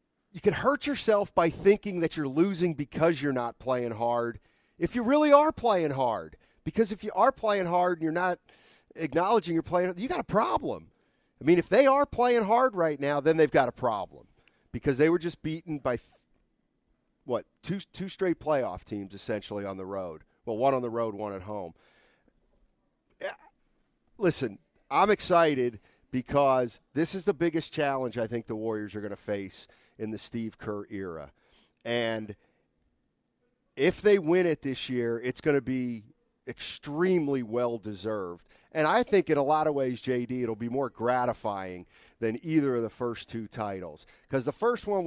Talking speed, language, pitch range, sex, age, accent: 175 wpm, English, 115-180 Hz, male, 40-59, American